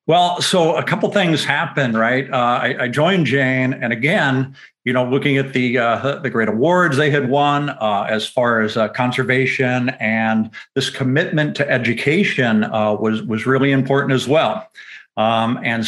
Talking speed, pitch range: 175 wpm, 115-140 Hz